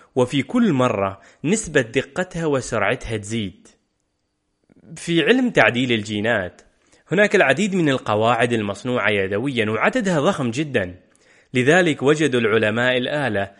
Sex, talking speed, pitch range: male, 105 wpm, 110-155 Hz